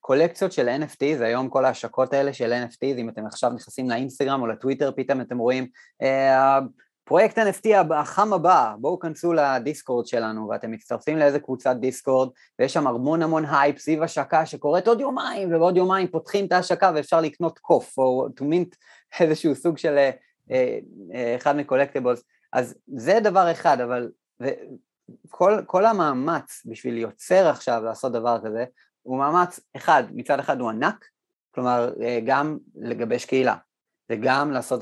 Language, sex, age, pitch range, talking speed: Hebrew, male, 30-49, 120-160 Hz, 155 wpm